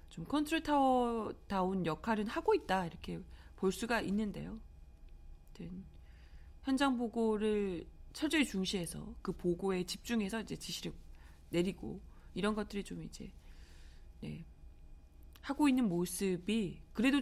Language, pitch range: Korean, 165-245 Hz